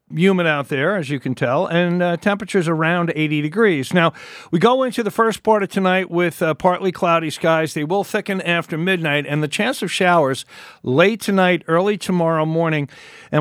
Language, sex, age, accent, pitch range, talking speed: English, male, 50-69, American, 140-180 Hz, 190 wpm